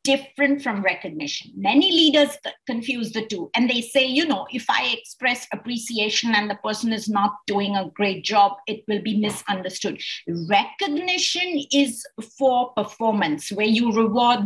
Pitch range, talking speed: 205-280 Hz, 155 wpm